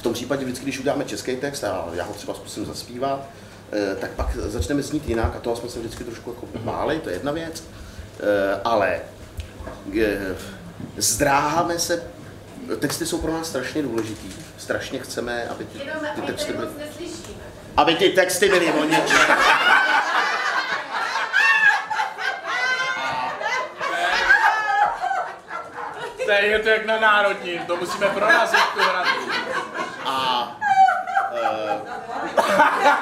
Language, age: Czech, 30-49